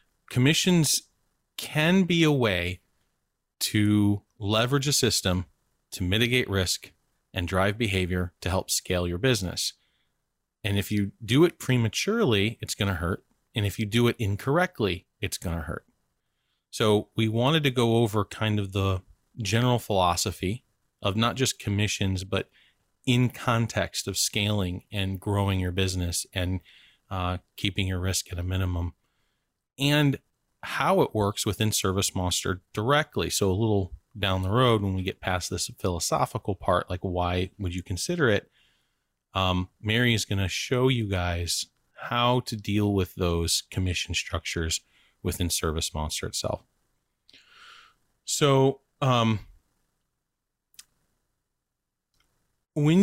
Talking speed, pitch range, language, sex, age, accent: 135 wpm, 90-120 Hz, English, male, 30-49, American